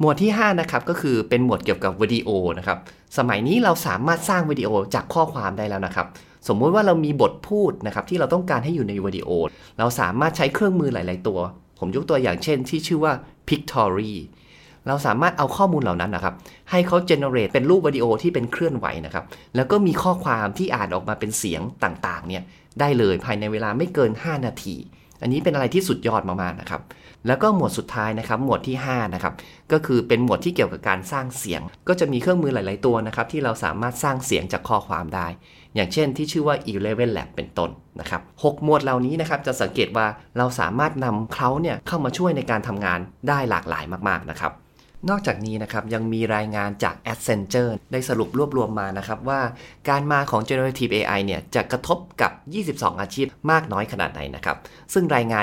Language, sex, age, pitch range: Thai, male, 30-49, 105-150 Hz